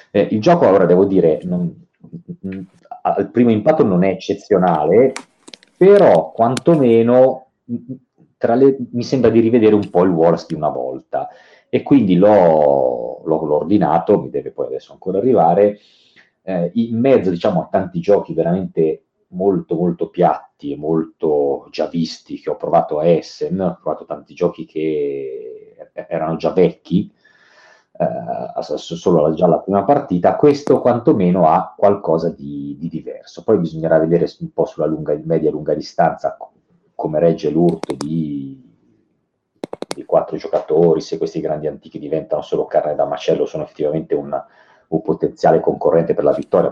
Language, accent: Italian, native